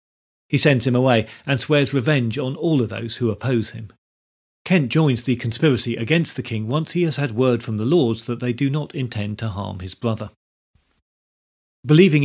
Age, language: 40-59, English